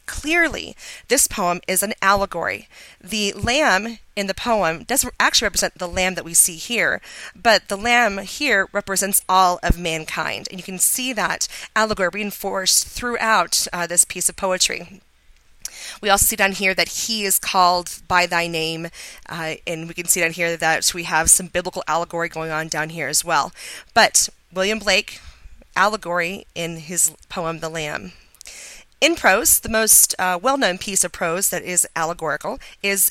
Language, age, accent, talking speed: English, 30-49, American, 170 wpm